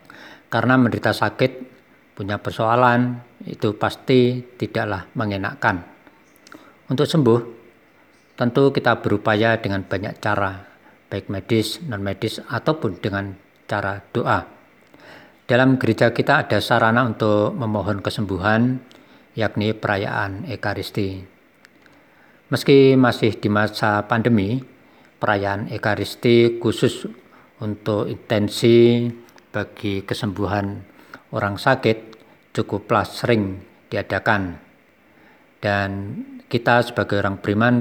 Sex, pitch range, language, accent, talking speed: male, 100-120 Hz, Indonesian, native, 90 wpm